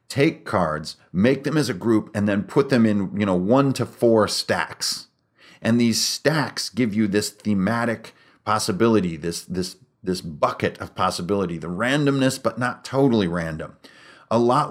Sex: male